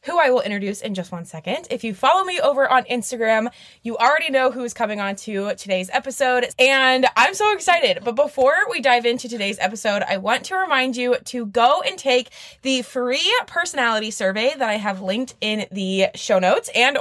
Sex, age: female, 20-39